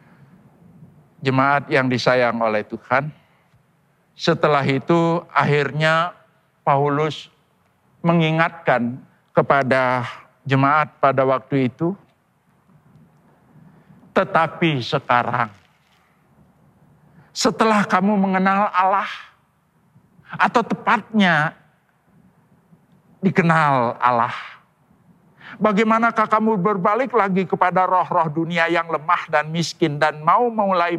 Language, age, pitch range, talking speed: Indonesian, 50-69, 150-185 Hz, 75 wpm